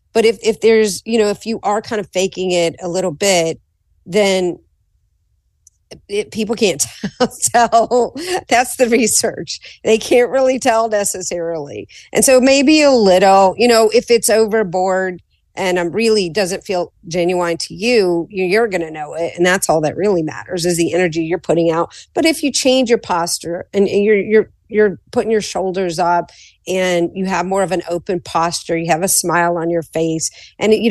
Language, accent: English, American